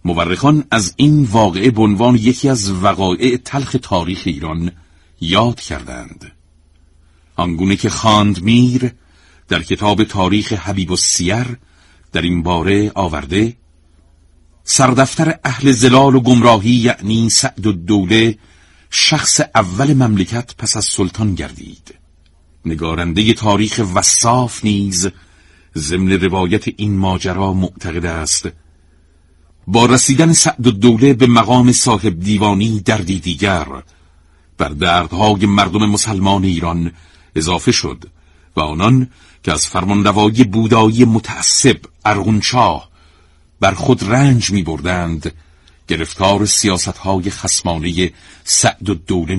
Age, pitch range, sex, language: 50-69, 80-115 Hz, male, Persian